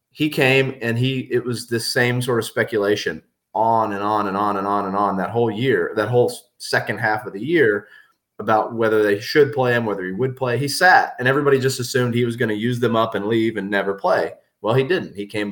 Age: 30-49